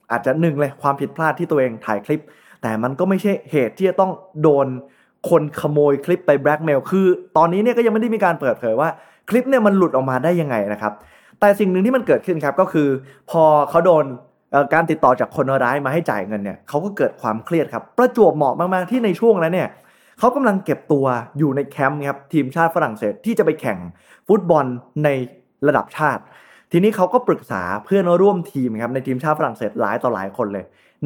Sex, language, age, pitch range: male, Thai, 20-39, 125-180 Hz